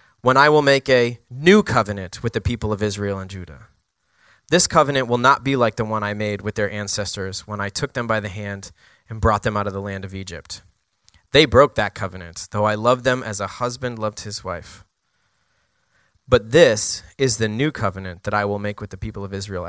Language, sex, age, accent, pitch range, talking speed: English, male, 20-39, American, 100-125 Hz, 220 wpm